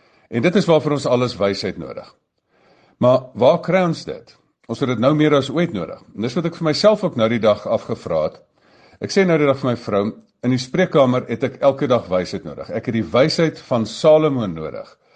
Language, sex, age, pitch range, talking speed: English, male, 50-69, 105-150 Hz, 225 wpm